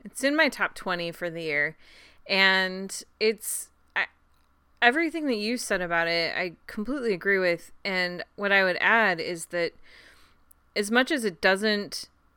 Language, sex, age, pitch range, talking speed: English, female, 30-49, 170-205 Hz, 155 wpm